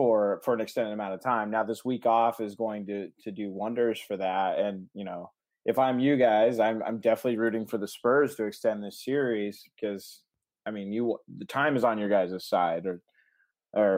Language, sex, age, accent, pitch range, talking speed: English, male, 20-39, American, 105-125 Hz, 210 wpm